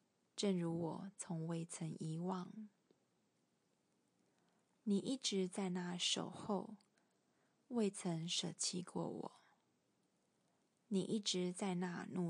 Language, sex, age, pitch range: Chinese, female, 20-39, 170-205 Hz